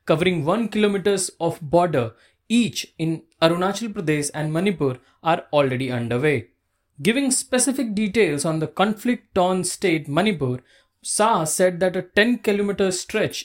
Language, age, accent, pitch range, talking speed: English, 20-39, Indian, 150-210 Hz, 130 wpm